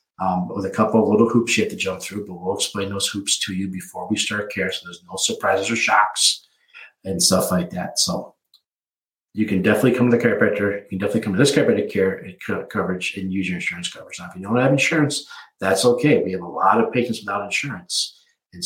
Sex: male